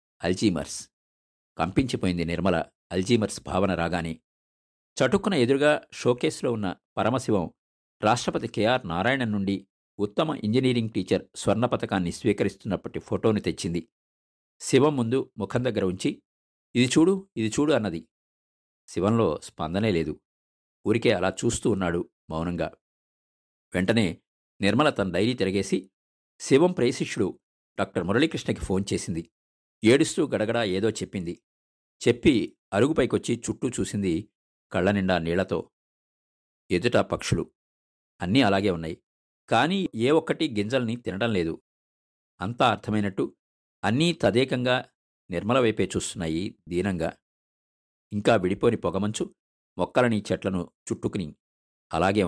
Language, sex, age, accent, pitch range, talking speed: Telugu, male, 50-69, native, 70-115 Hz, 100 wpm